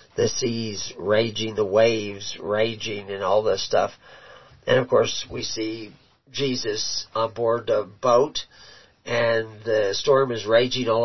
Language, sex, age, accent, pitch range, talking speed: English, male, 50-69, American, 110-140 Hz, 140 wpm